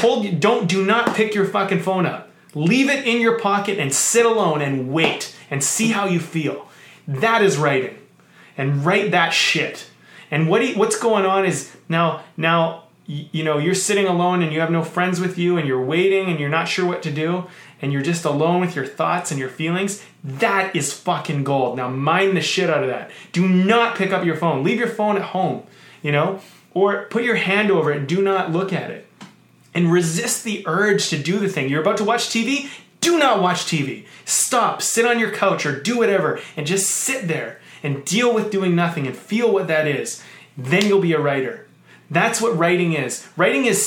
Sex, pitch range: male, 155-205 Hz